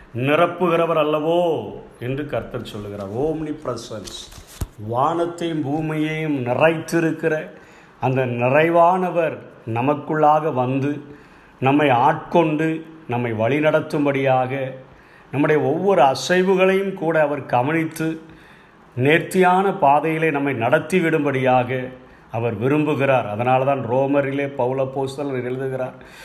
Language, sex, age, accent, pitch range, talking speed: Tamil, male, 50-69, native, 130-160 Hz, 80 wpm